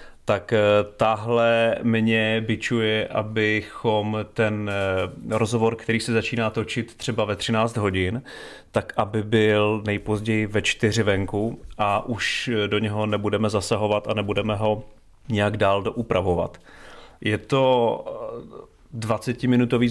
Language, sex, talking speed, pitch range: Czech, male, 110 wpm, 100-115 Hz